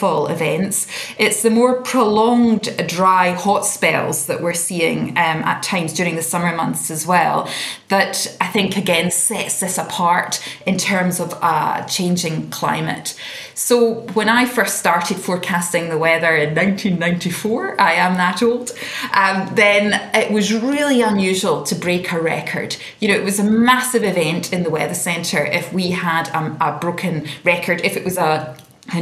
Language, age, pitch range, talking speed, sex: English, 20-39, 170-215 Hz, 165 wpm, female